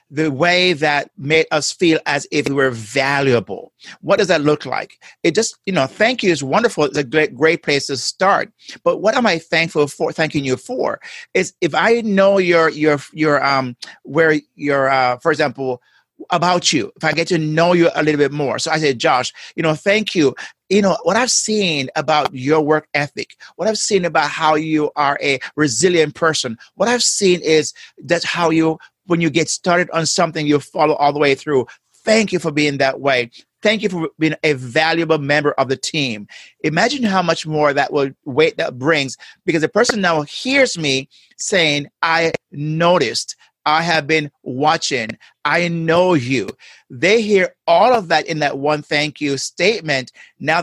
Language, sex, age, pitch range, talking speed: English, male, 50-69, 145-175 Hz, 190 wpm